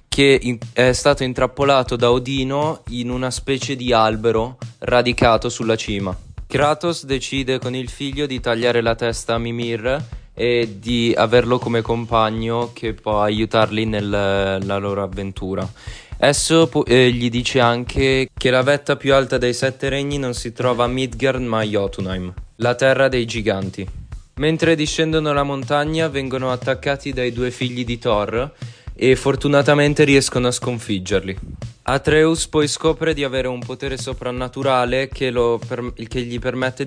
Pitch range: 115-135 Hz